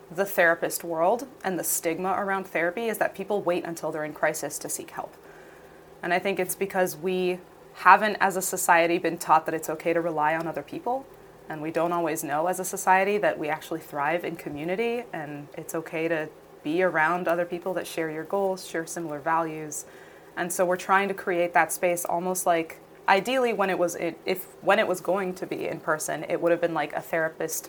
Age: 20-39